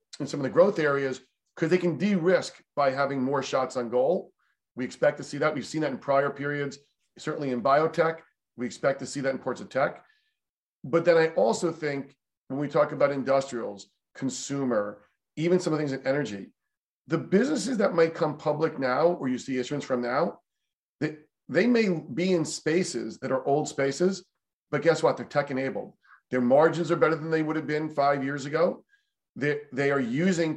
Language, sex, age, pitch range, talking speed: English, male, 40-59, 130-160 Hz, 200 wpm